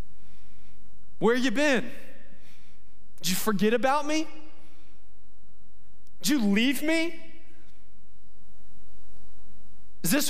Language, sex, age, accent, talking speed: English, male, 20-39, American, 80 wpm